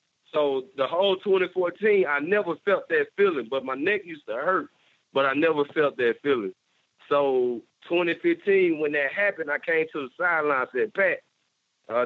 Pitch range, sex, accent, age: 115-165 Hz, male, American, 30-49